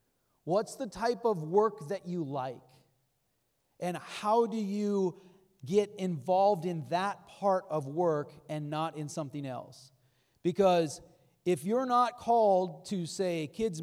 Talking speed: 140 wpm